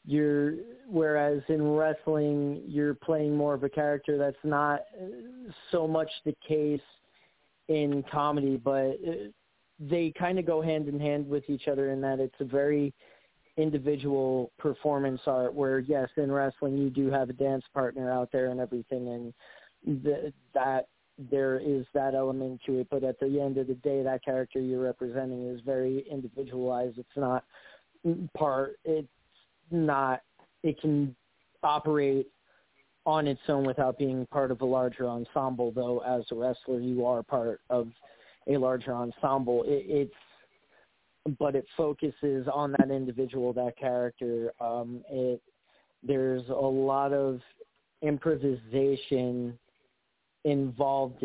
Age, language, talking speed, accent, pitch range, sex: 30-49, English, 140 wpm, American, 125-145 Hz, male